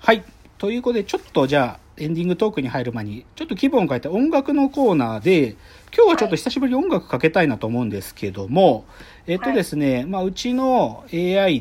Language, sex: Japanese, male